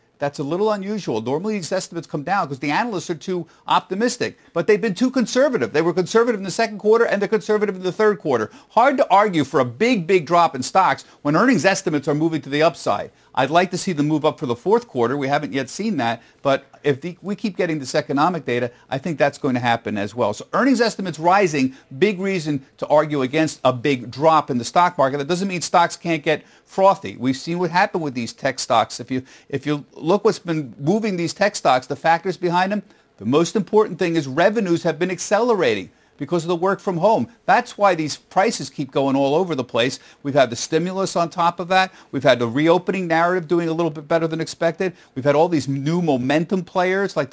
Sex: male